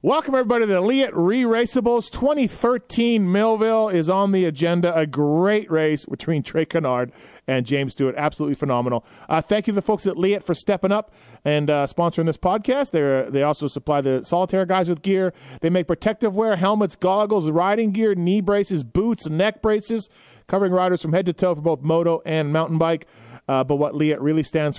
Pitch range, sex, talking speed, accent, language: 140-190 Hz, male, 190 wpm, American, English